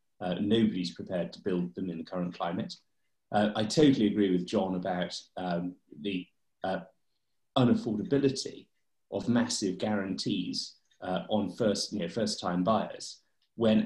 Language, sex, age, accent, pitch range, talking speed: English, male, 30-49, British, 90-110 Hz, 145 wpm